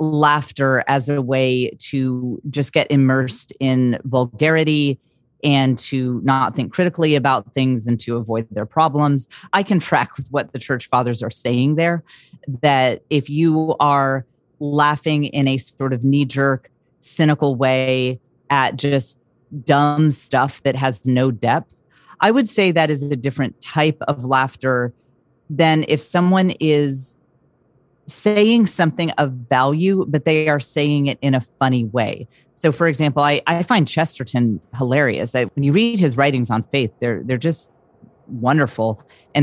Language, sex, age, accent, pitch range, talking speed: English, female, 30-49, American, 130-155 Hz, 155 wpm